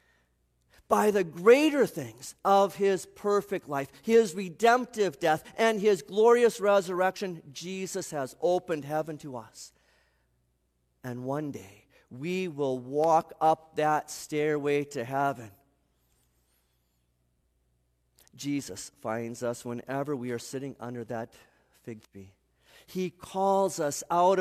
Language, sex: English, male